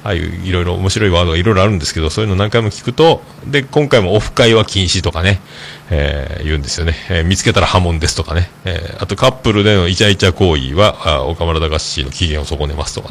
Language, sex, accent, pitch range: Japanese, male, native, 85-130 Hz